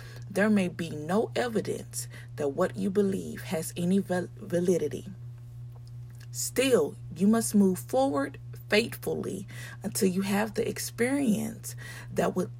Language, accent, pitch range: English, American, 120-195 Hz